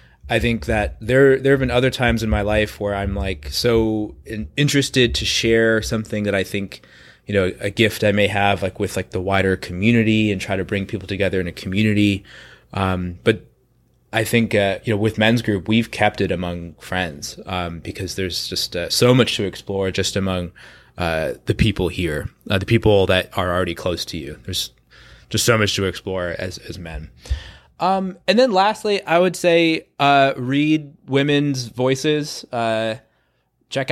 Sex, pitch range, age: male, 95-130 Hz, 20-39